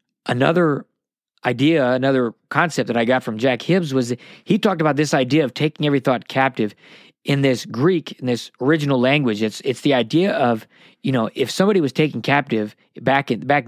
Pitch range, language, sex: 125-155 Hz, English, male